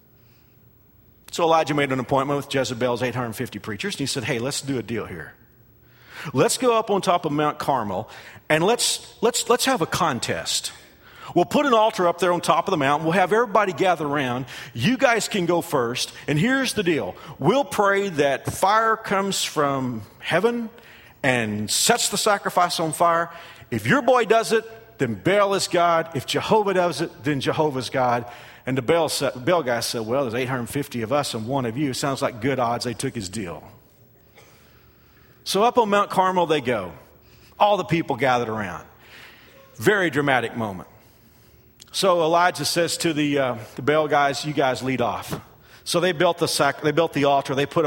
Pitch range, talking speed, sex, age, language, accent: 125-175 Hz, 185 wpm, male, 50-69, English, American